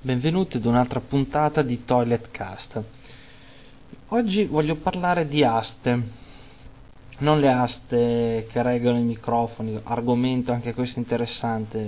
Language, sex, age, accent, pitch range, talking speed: Italian, male, 20-39, native, 110-140 Hz, 115 wpm